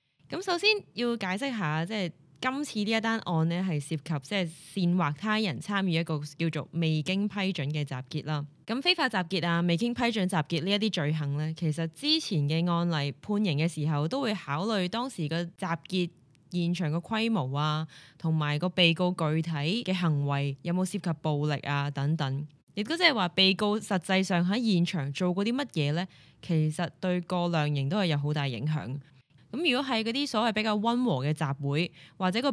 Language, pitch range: Chinese, 150-210 Hz